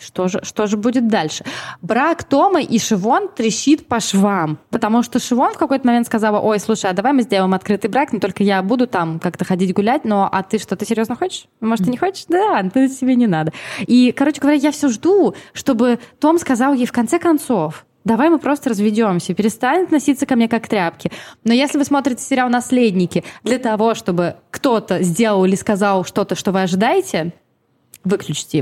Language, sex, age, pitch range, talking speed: Russian, female, 20-39, 185-260 Hz, 195 wpm